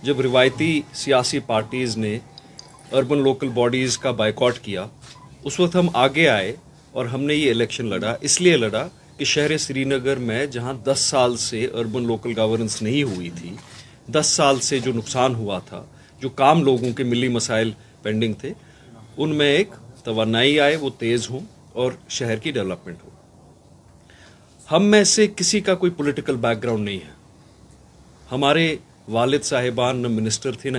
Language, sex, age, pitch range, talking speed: Urdu, male, 40-59, 115-145 Hz, 170 wpm